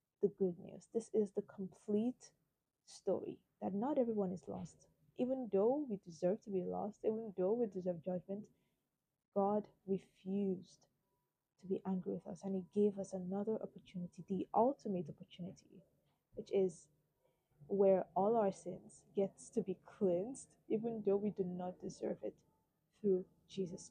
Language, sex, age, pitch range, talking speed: English, female, 20-39, 180-210 Hz, 150 wpm